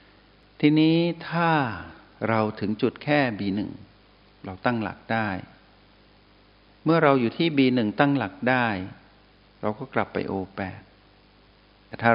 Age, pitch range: 60-79, 95-115 Hz